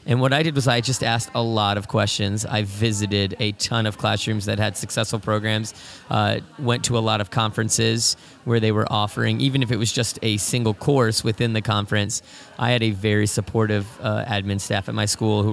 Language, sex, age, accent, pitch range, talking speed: English, male, 30-49, American, 105-115 Hz, 215 wpm